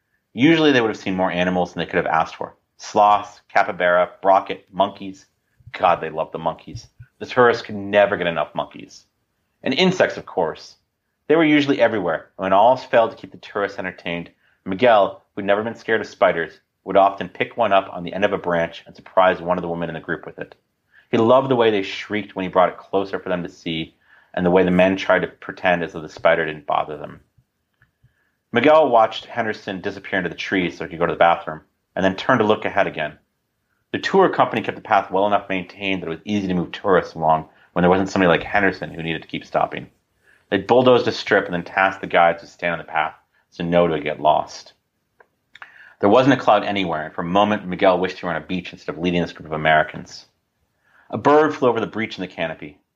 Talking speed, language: 235 wpm, English